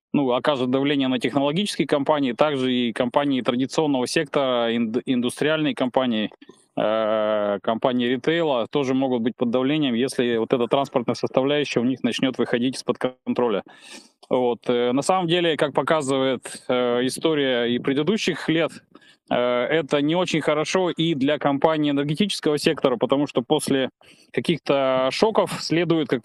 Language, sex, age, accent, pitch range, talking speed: Russian, male, 20-39, native, 130-155 Hz, 130 wpm